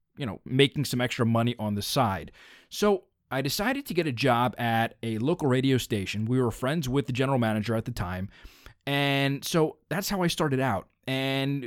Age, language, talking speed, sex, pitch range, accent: 20-39, English, 200 wpm, male, 115-155 Hz, American